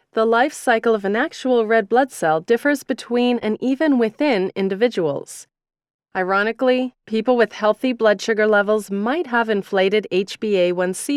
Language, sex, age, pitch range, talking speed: English, female, 30-49, 195-245 Hz, 140 wpm